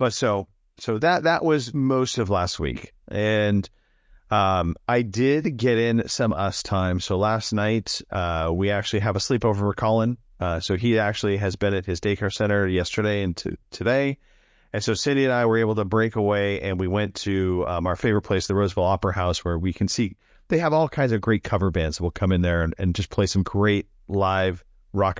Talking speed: 215 wpm